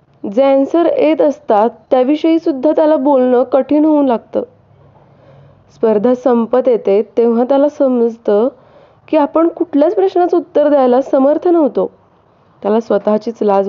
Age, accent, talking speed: 20-39, native, 125 wpm